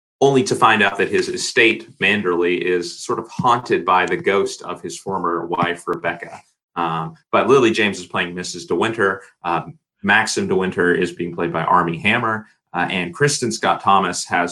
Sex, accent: male, American